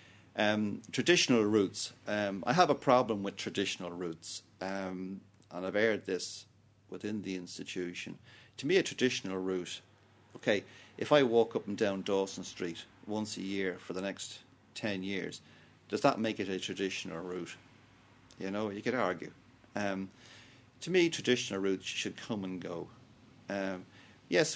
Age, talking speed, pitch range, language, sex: 40-59, 155 wpm, 95-115 Hz, English, male